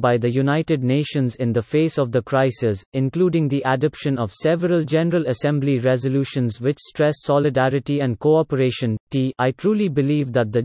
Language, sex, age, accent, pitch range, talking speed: English, male, 30-49, Indian, 125-155 Hz, 165 wpm